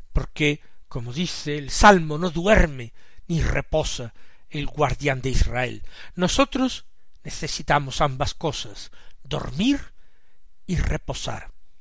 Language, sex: Spanish, male